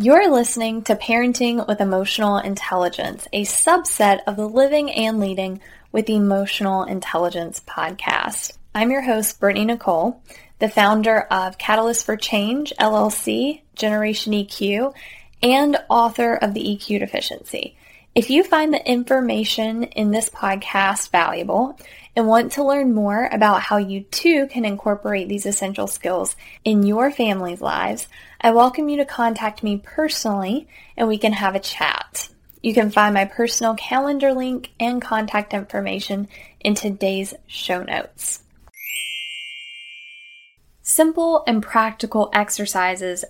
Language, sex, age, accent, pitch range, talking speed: English, female, 10-29, American, 195-235 Hz, 135 wpm